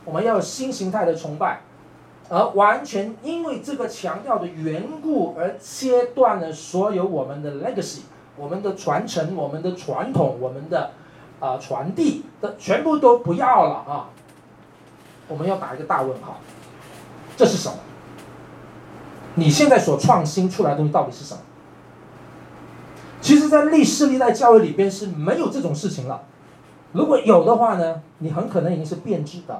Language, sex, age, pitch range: Chinese, male, 40-59, 160-230 Hz